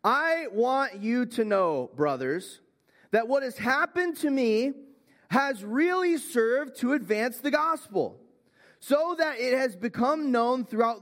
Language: English